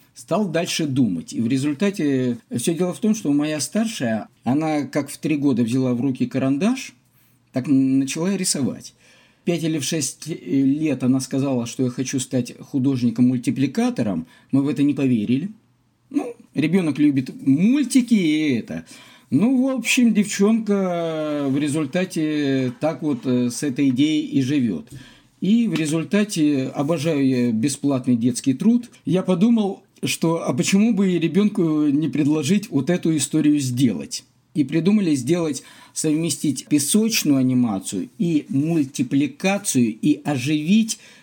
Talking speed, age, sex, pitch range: 135 wpm, 50-69, male, 135-200 Hz